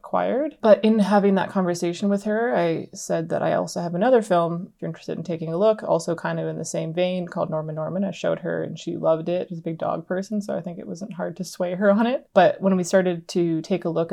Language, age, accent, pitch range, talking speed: English, 20-39, American, 165-195 Hz, 270 wpm